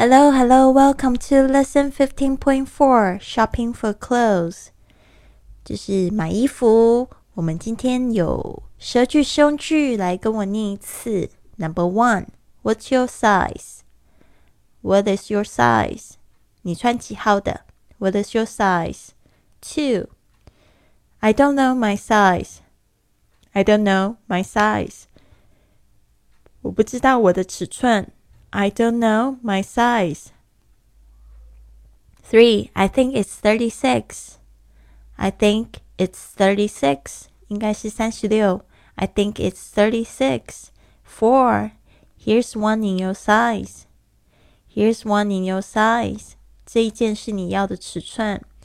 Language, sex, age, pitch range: Chinese, female, 20-39, 180-235 Hz